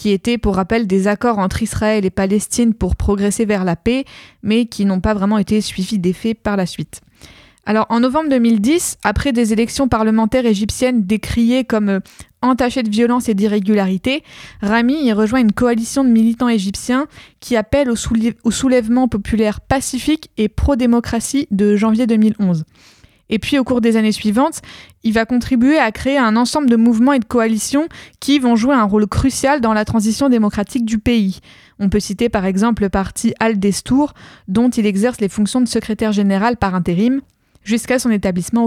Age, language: 20-39, French